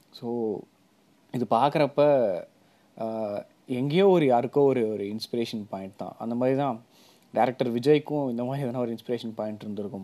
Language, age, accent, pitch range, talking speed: Tamil, 30-49, native, 110-135 Hz, 130 wpm